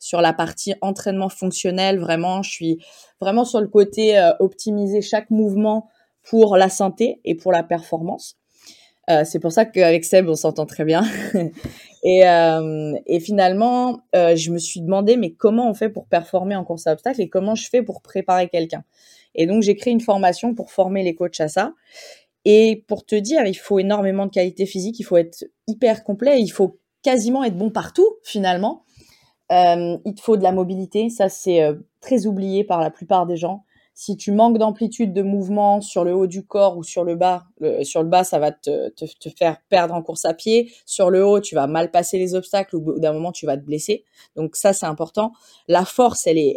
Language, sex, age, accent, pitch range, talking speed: French, female, 20-39, French, 170-215 Hz, 210 wpm